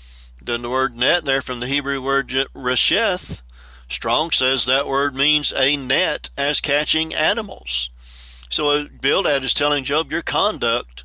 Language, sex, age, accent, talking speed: English, male, 50-69, American, 145 wpm